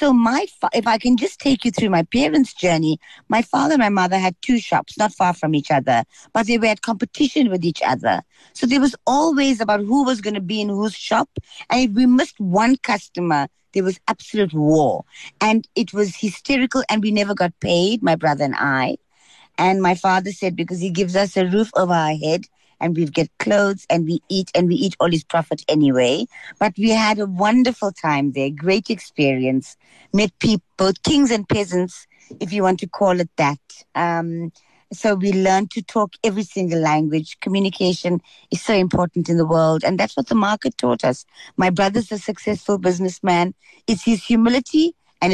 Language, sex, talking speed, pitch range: English, female, 200 wpm, 170-220 Hz